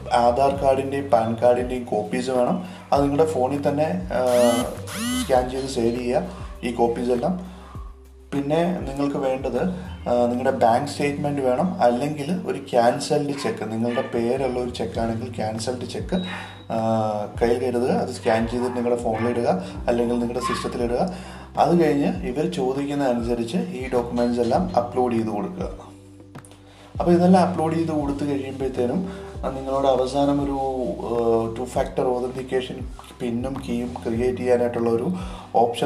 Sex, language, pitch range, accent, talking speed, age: male, Malayalam, 115-135 Hz, native, 120 wpm, 30-49